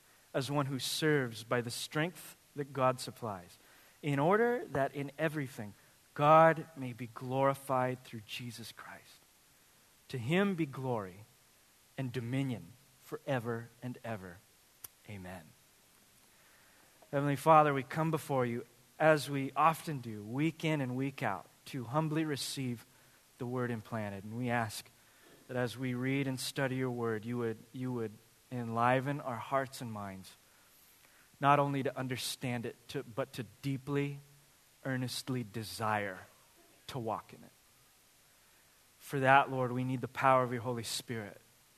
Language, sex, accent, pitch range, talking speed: English, male, American, 120-145 Hz, 140 wpm